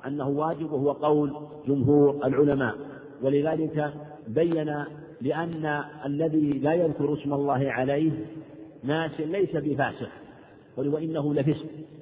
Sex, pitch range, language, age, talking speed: male, 140-160 Hz, Arabic, 50-69, 100 wpm